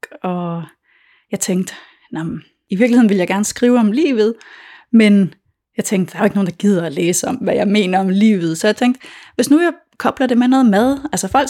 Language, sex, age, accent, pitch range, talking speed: Danish, female, 30-49, native, 185-245 Hz, 220 wpm